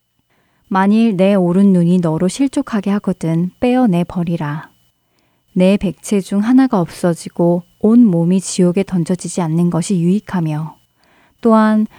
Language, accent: Korean, native